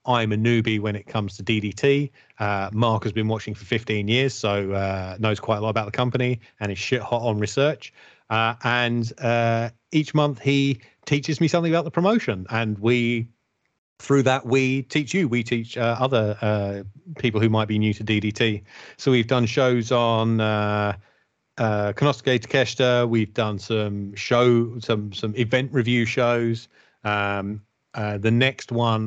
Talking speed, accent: 175 wpm, British